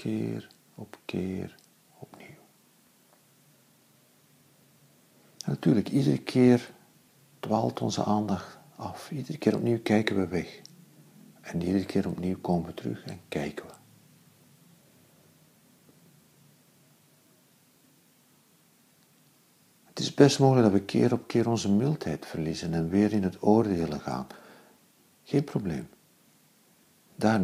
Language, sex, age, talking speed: Dutch, male, 50-69, 105 wpm